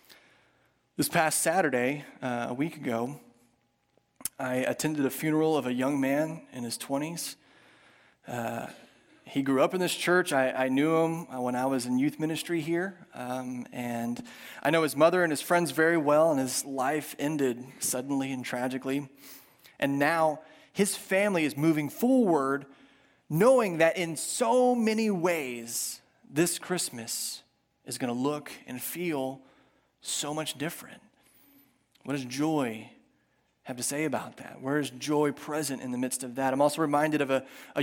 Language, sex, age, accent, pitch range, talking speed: English, male, 30-49, American, 130-165 Hz, 160 wpm